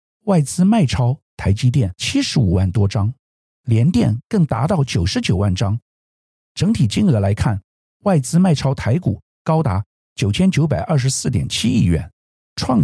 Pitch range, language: 95-145 Hz, Chinese